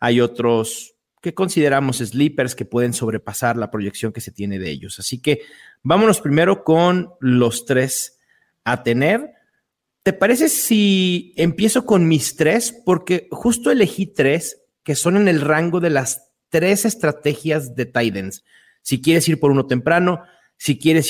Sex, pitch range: male, 120-165 Hz